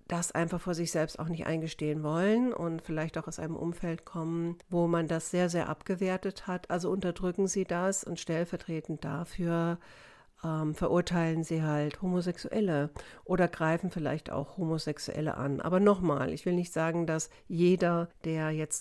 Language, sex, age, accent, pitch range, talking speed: German, female, 60-79, German, 155-180 Hz, 160 wpm